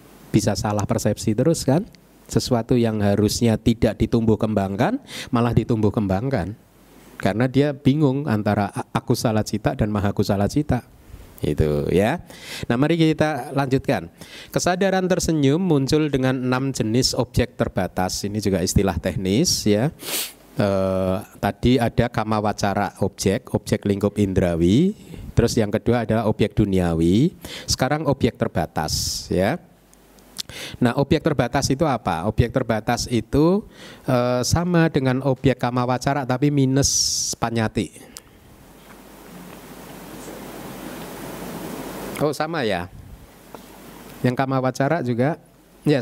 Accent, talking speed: native, 115 wpm